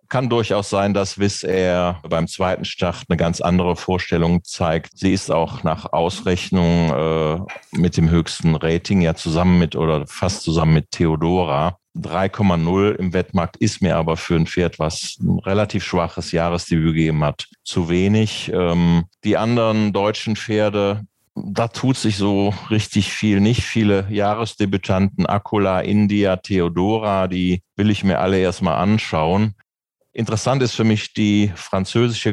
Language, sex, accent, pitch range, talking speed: German, male, German, 85-105 Hz, 150 wpm